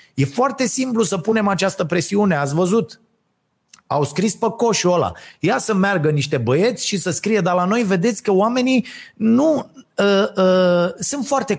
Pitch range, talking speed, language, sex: 160-245 Hz, 160 wpm, Romanian, male